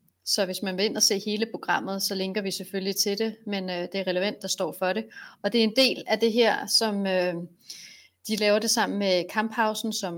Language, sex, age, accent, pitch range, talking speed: Danish, female, 30-49, native, 185-225 Hz, 240 wpm